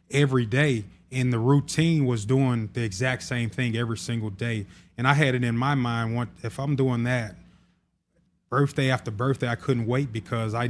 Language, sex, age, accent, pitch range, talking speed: English, male, 20-39, American, 115-145 Hz, 190 wpm